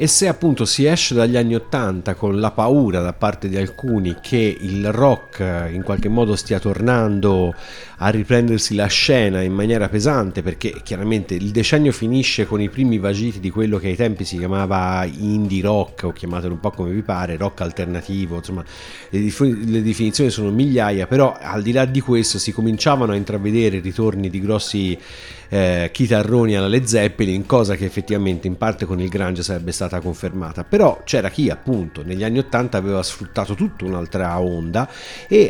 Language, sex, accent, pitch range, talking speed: Italian, male, native, 95-115 Hz, 180 wpm